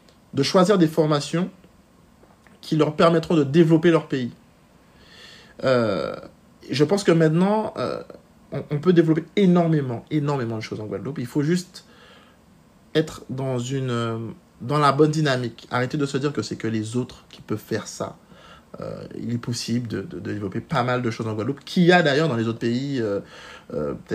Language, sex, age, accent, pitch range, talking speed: French, male, 50-69, French, 120-165 Hz, 180 wpm